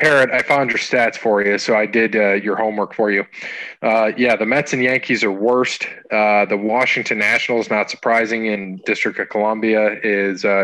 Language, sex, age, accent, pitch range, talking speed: English, male, 20-39, American, 105-115 Hz, 190 wpm